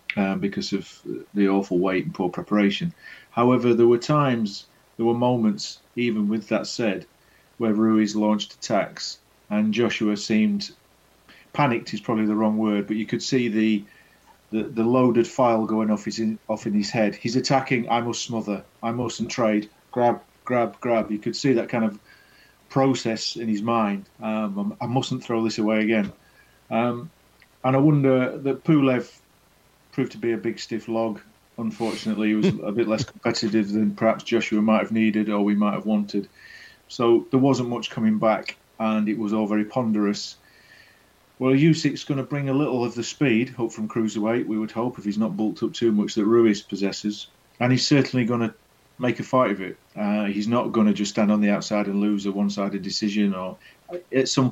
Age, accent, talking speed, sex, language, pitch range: 40-59, British, 190 wpm, male, English, 105-120 Hz